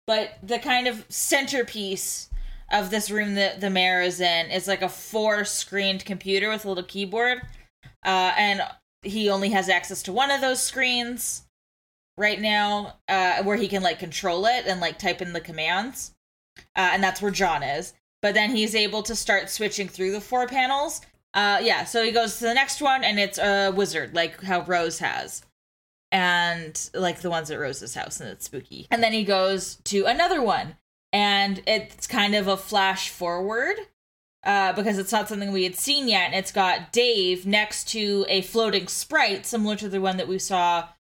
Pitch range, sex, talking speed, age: 185-220 Hz, female, 195 wpm, 10-29